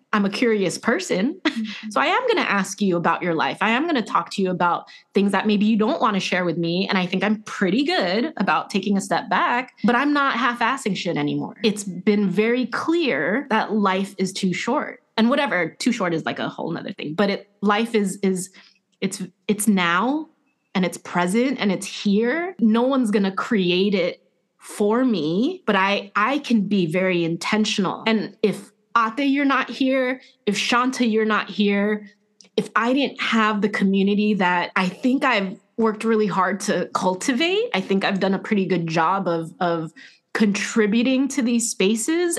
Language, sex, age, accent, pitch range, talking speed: English, female, 20-39, American, 190-250 Hz, 195 wpm